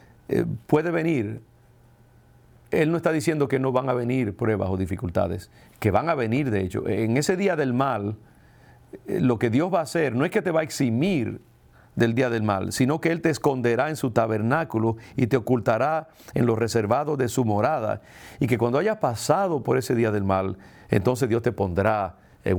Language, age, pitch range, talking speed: English, 50-69, 105-130 Hz, 195 wpm